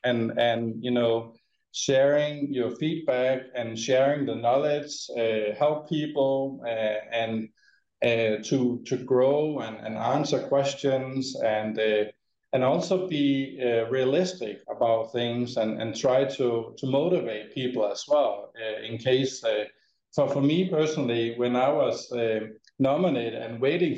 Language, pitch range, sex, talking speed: English, 115-140 Hz, male, 145 wpm